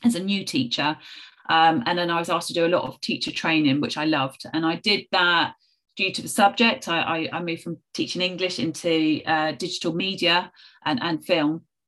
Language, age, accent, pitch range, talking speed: English, 30-49, British, 155-185 Hz, 210 wpm